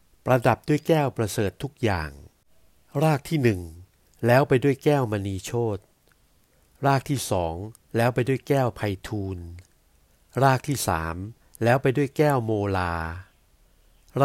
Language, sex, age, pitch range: Thai, male, 60-79, 95-135 Hz